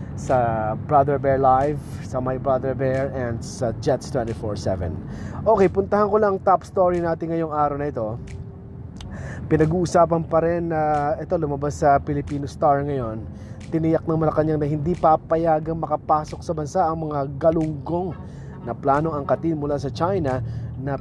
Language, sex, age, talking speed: Filipino, male, 20-39, 150 wpm